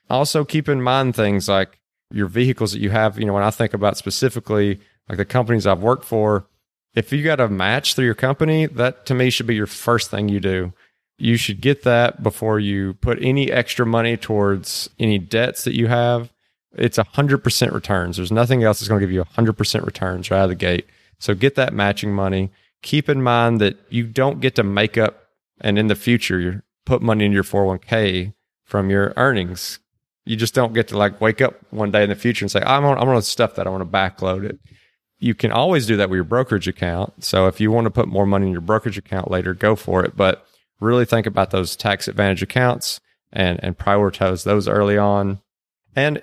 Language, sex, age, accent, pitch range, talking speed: English, male, 30-49, American, 100-120 Hz, 220 wpm